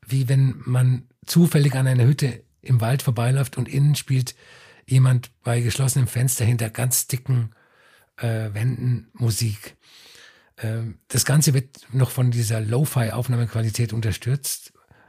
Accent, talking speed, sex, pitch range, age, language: German, 125 wpm, male, 115-130 Hz, 50-69, German